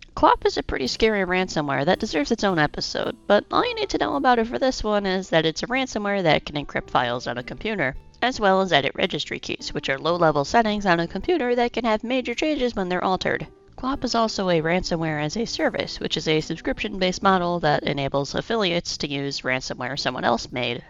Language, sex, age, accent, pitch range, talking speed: English, female, 30-49, American, 155-230 Hz, 220 wpm